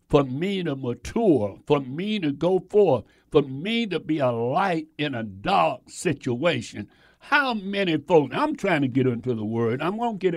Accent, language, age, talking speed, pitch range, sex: American, English, 60-79, 185 wpm, 115-165 Hz, male